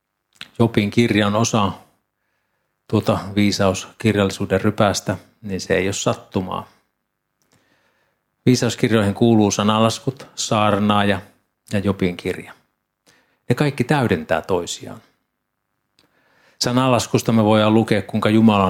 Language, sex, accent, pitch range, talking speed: Finnish, male, native, 95-115 Hz, 95 wpm